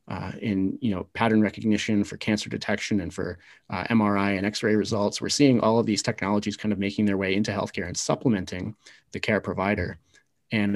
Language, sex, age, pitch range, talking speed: English, male, 30-49, 100-110 Hz, 195 wpm